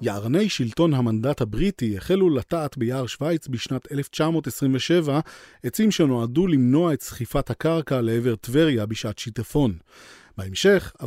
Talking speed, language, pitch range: 115 wpm, Hebrew, 120-165 Hz